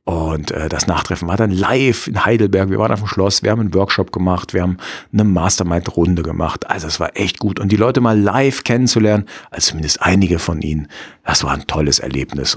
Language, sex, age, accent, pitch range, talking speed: German, male, 50-69, German, 85-105 Hz, 210 wpm